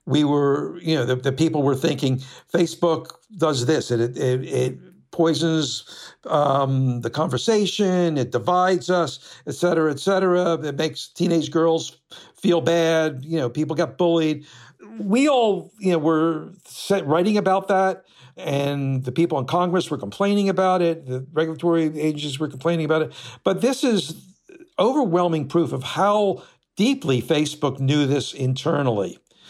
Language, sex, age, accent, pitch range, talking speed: English, male, 60-79, American, 130-170 Hz, 155 wpm